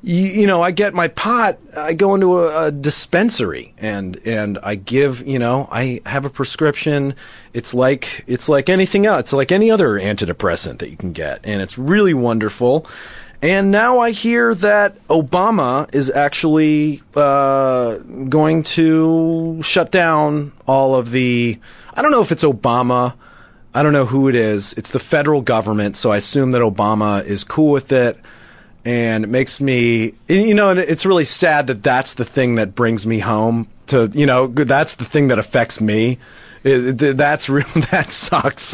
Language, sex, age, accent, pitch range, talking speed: English, male, 30-49, American, 115-160 Hz, 175 wpm